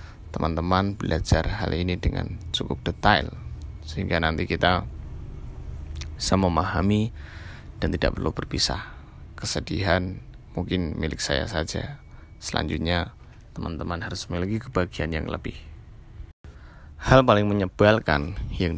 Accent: native